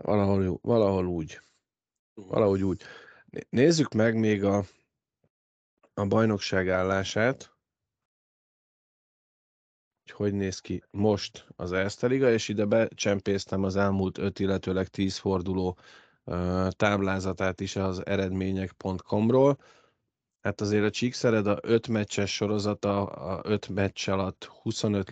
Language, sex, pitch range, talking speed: Hungarian, male, 95-110 Hz, 105 wpm